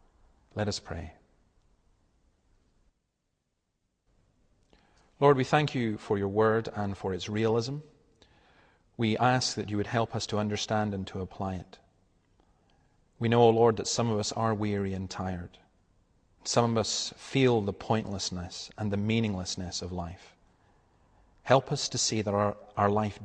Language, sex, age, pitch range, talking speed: English, male, 40-59, 95-115 Hz, 150 wpm